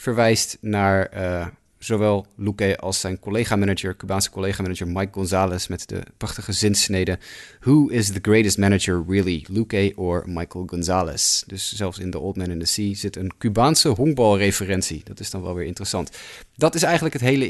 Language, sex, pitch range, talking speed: Dutch, male, 95-115 Hz, 170 wpm